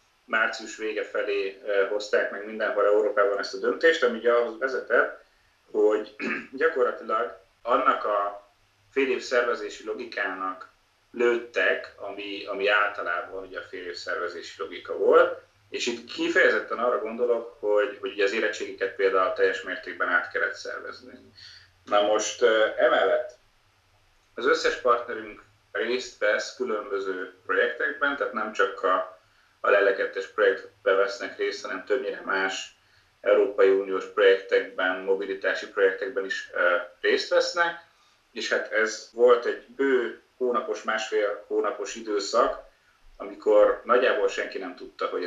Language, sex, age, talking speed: Hungarian, male, 30-49, 125 wpm